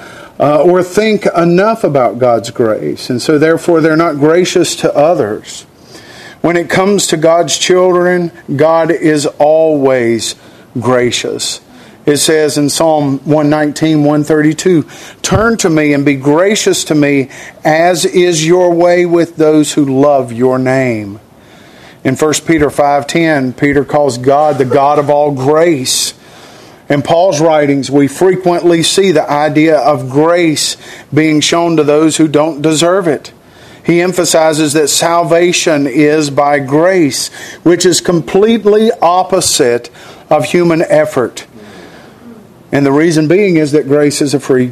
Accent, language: American, English